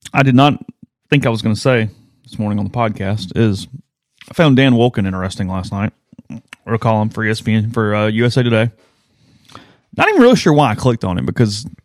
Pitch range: 105-135 Hz